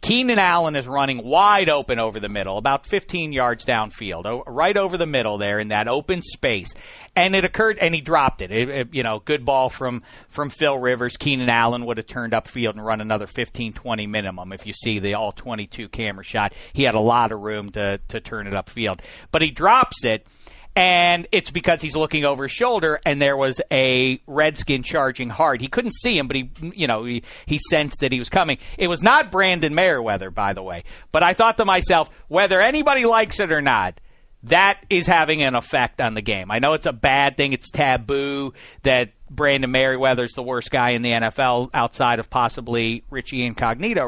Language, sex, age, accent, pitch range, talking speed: English, male, 40-59, American, 115-160 Hz, 210 wpm